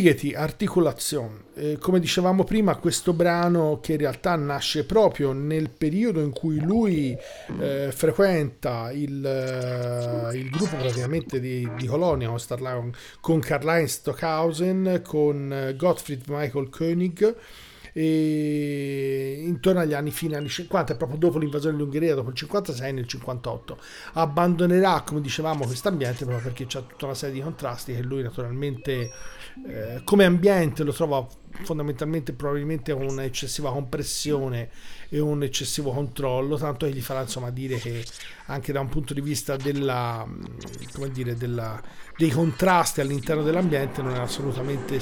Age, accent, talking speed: 40-59, native, 140 wpm